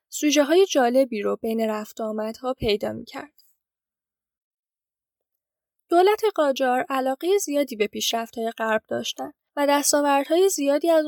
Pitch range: 235-310 Hz